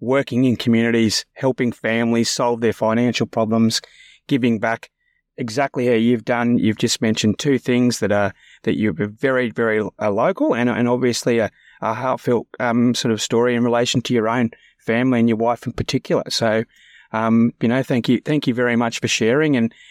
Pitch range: 115-150 Hz